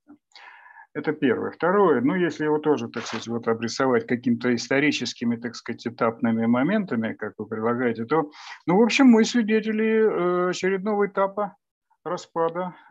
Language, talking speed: Russian, 135 wpm